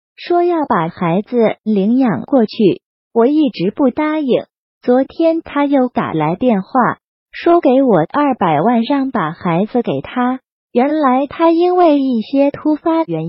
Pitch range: 215-305 Hz